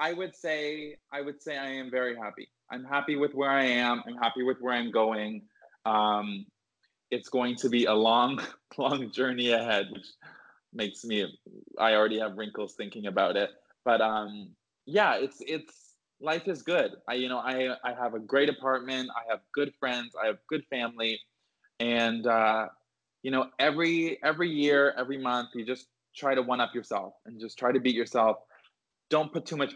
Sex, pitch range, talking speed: male, 110-135 Hz, 190 wpm